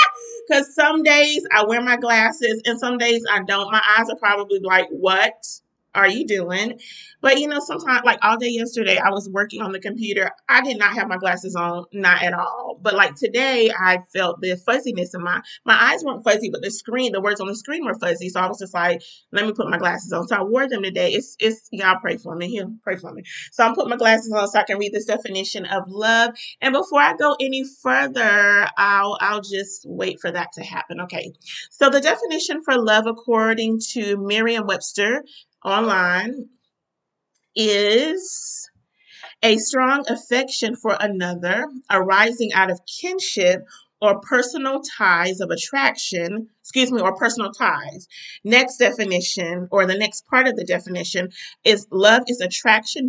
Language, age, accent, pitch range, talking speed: English, 30-49, American, 195-245 Hz, 190 wpm